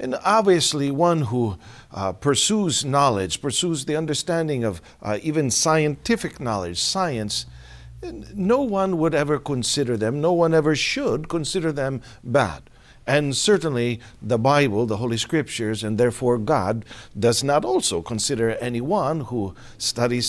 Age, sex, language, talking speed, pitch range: 50-69, male, Filipino, 135 wpm, 115-180 Hz